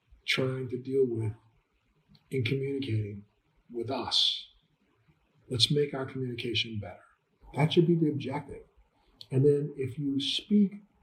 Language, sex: English, male